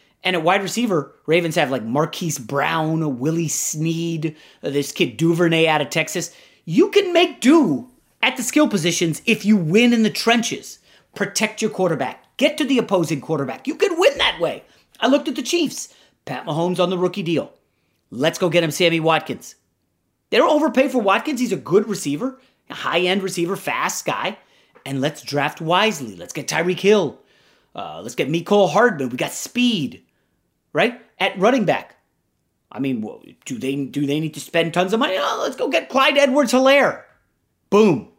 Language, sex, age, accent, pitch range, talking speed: English, male, 30-49, American, 165-245 Hz, 180 wpm